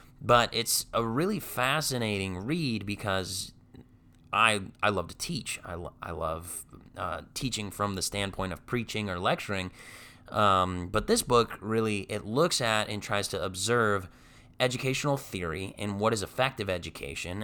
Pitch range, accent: 95-120 Hz, American